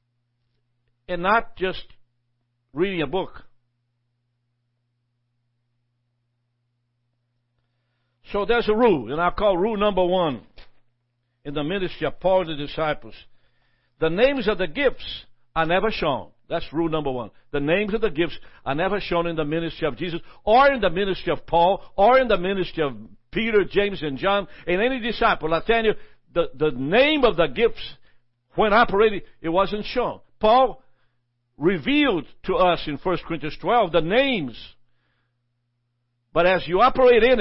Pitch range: 120-195 Hz